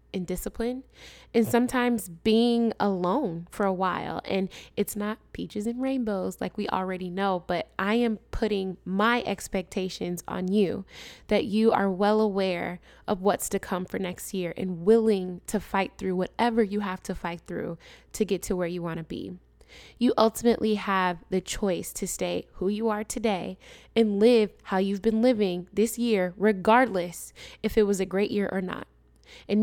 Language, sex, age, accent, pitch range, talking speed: English, female, 10-29, American, 190-230 Hz, 175 wpm